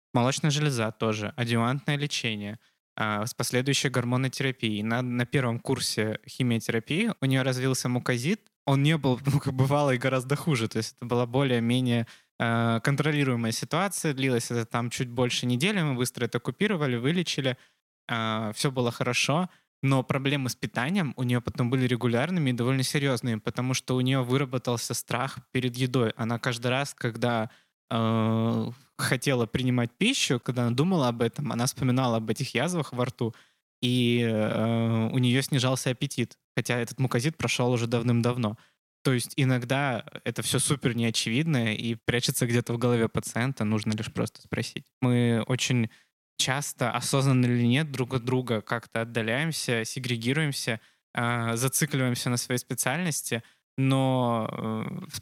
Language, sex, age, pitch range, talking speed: Russian, male, 20-39, 120-135 Hz, 150 wpm